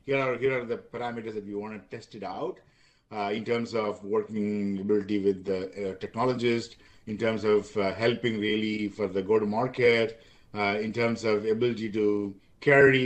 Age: 50-69